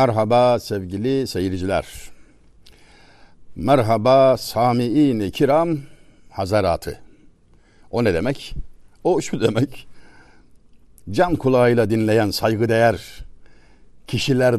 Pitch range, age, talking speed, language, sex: 95-130 Hz, 60-79, 75 wpm, Turkish, male